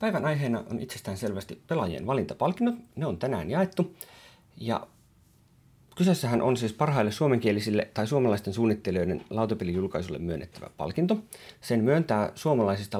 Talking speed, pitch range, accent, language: 120 wpm, 100-155 Hz, native, Finnish